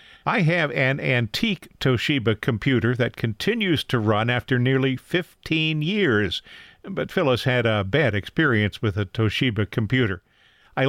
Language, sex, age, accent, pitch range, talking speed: English, male, 50-69, American, 115-150 Hz, 140 wpm